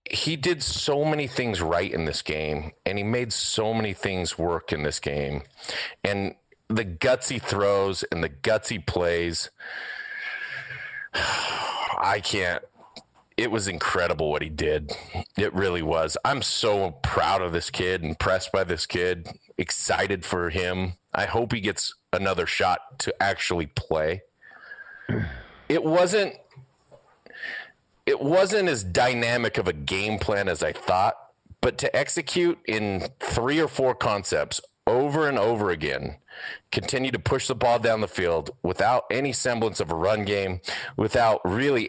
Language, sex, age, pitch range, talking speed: English, male, 30-49, 95-135 Hz, 145 wpm